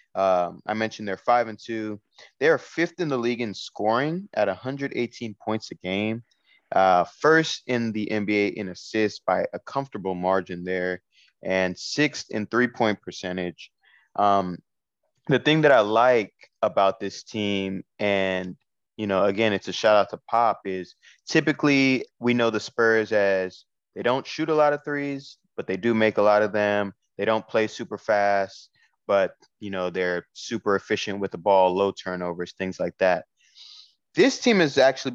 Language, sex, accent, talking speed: English, male, American, 175 wpm